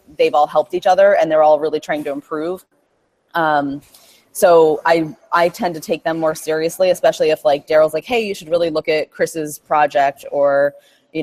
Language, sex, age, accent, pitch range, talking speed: English, female, 20-39, American, 150-180 Hz, 200 wpm